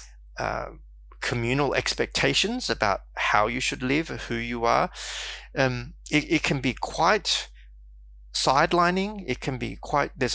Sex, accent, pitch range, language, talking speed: male, Australian, 105-145 Hz, English, 135 wpm